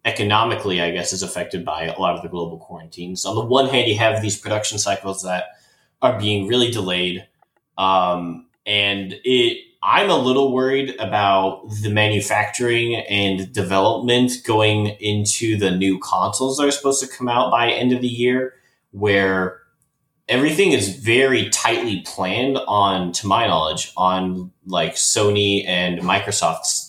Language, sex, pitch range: English, male, 95-125 Hz